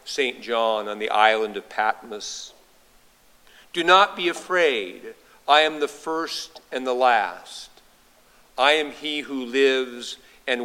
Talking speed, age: 135 wpm, 50-69